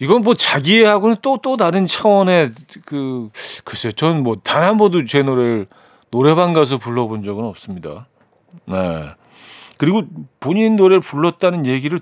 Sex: male